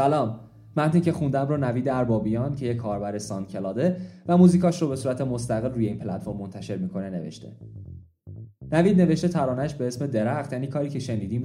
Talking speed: 175 wpm